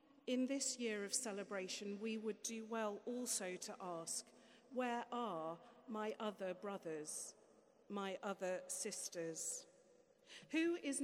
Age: 40-59